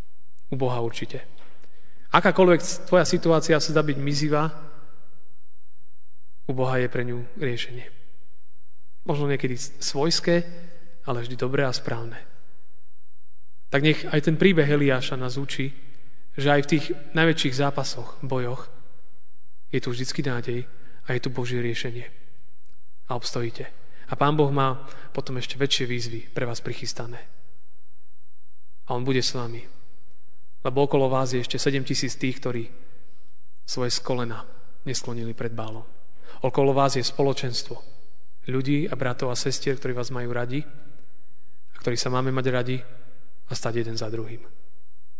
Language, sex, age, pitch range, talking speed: Slovak, male, 30-49, 120-145 Hz, 140 wpm